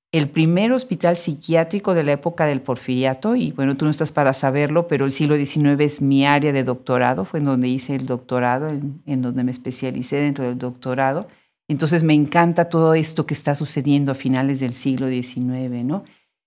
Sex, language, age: female, Spanish, 50-69